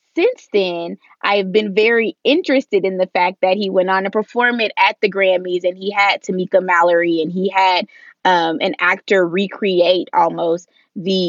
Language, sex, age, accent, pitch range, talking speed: English, female, 20-39, American, 175-205 Hz, 180 wpm